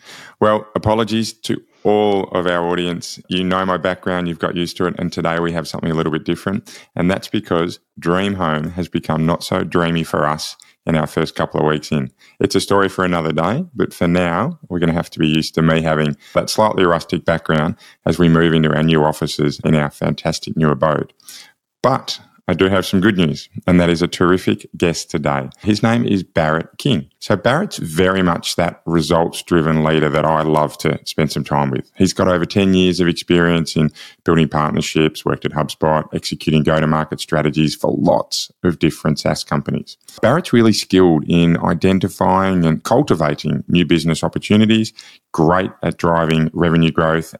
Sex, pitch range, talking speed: male, 80-95 Hz, 190 wpm